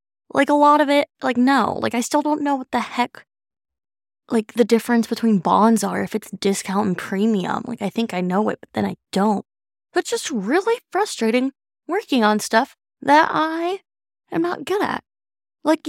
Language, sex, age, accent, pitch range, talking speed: English, female, 20-39, American, 205-295 Hz, 190 wpm